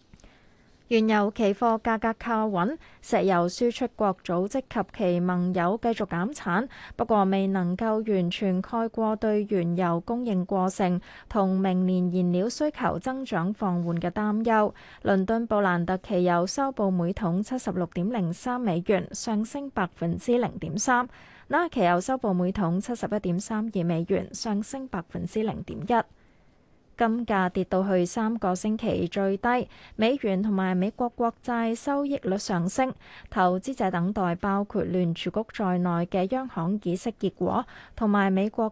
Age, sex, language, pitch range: 20-39, female, Chinese, 185-230 Hz